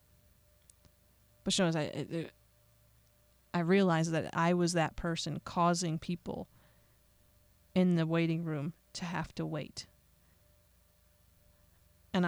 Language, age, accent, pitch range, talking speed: English, 30-49, American, 115-185 Hz, 110 wpm